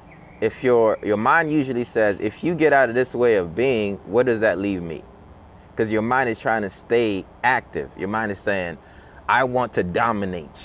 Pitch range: 100-130 Hz